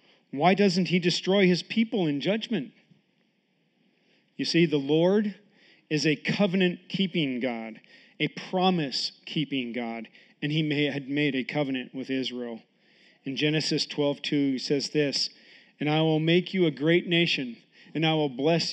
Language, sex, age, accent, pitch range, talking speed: English, male, 40-59, American, 140-195 Hz, 145 wpm